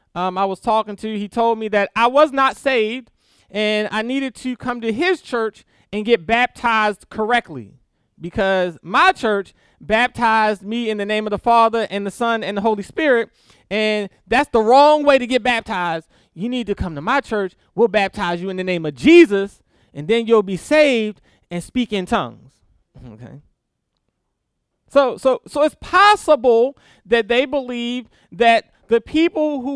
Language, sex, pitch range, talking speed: English, male, 205-265 Hz, 175 wpm